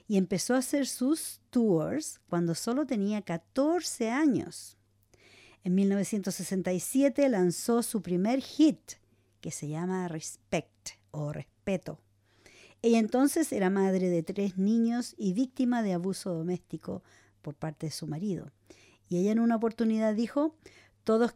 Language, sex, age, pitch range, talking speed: English, female, 50-69, 165-240 Hz, 130 wpm